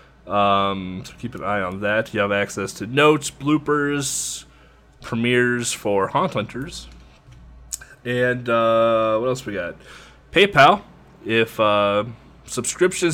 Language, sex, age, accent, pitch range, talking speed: English, male, 20-39, American, 100-130 Hz, 125 wpm